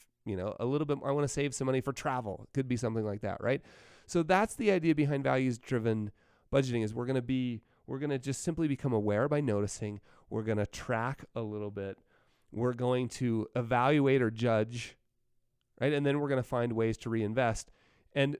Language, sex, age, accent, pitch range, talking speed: English, male, 30-49, American, 110-145 Hz, 200 wpm